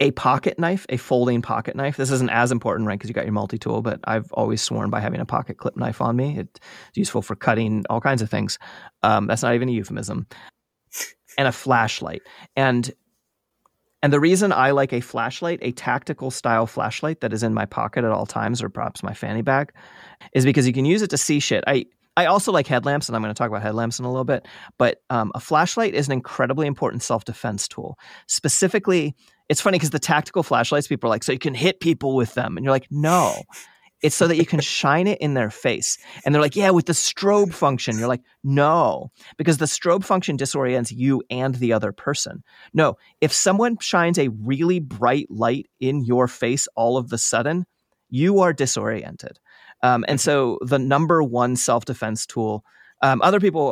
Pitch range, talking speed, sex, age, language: 115-150 Hz, 210 wpm, male, 30-49, English